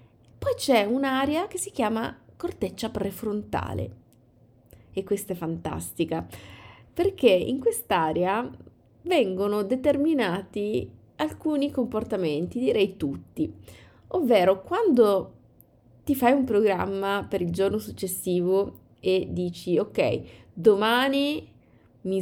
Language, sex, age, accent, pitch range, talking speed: Italian, female, 30-49, native, 175-240 Hz, 95 wpm